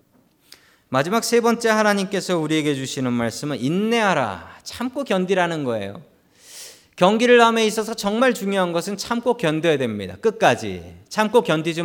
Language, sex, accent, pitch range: Korean, male, native, 130-215 Hz